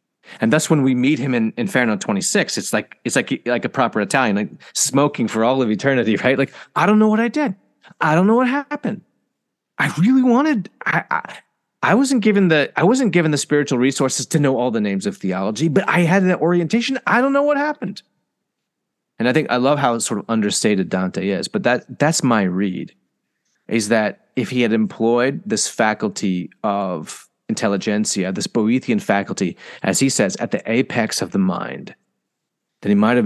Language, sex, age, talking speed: English, male, 30-49, 200 wpm